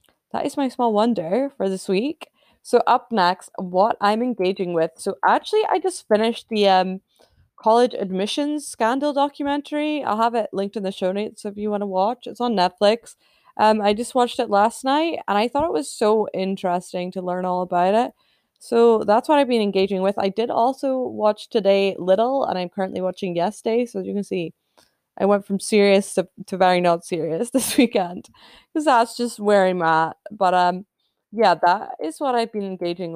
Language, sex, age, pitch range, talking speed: English, female, 20-39, 185-235 Hz, 200 wpm